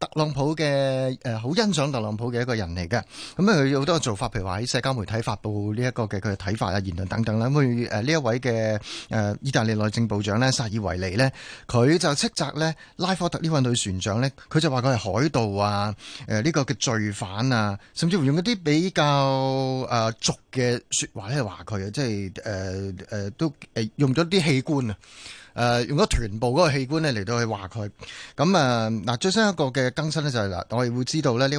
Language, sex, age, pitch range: Chinese, male, 30-49, 105-140 Hz